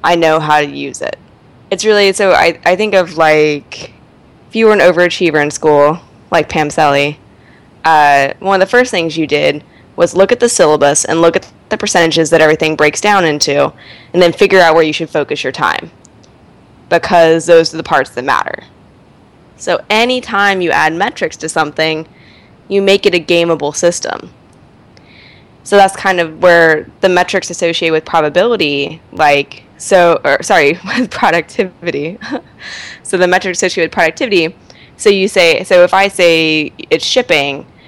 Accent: American